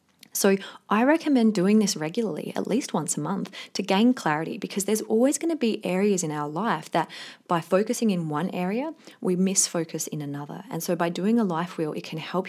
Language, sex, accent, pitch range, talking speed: English, female, Australian, 165-220 Hz, 215 wpm